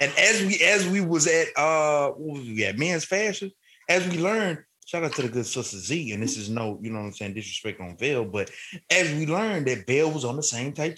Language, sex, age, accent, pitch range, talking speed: English, male, 20-39, American, 125-160 Hz, 255 wpm